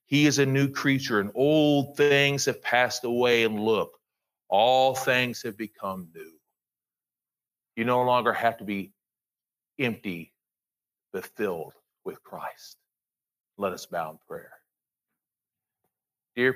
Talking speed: 125 wpm